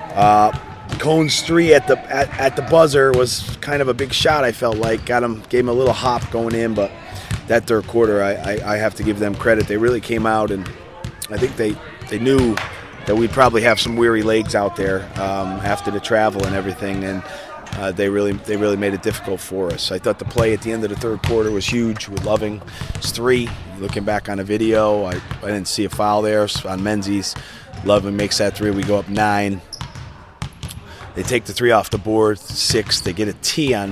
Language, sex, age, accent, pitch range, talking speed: English, male, 30-49, American, 100-115 Hz, 225 wpm